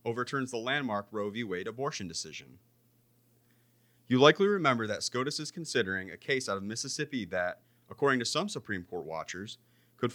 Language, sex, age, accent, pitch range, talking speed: English, male, 30-49, American, 100-130 Hz, 165 wpm